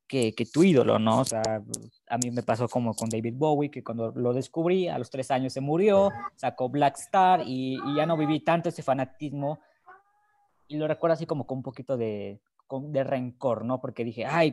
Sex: female